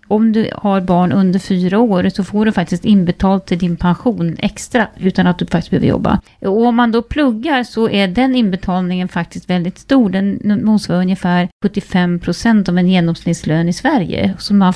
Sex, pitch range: female, 175-215 Hz